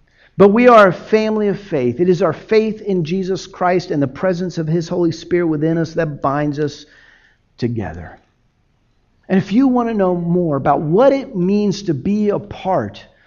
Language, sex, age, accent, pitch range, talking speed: English, male, 50-69, American, 130-190 Hz, 190 wpm